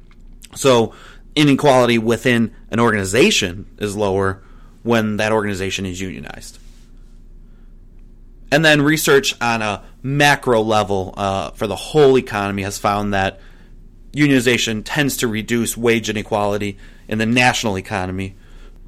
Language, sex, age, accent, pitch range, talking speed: English, male, 30-49, American, 100-125 Hz, 120 wpm